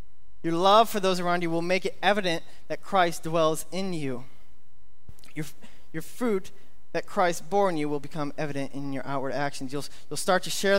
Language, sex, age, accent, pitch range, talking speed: English, male, 20-39, American, 120-165 Hz, 195 wpm